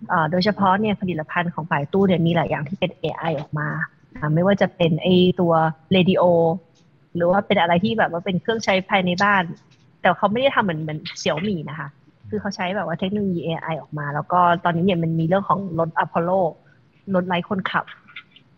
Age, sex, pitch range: 20-39, female, 160-195 Hz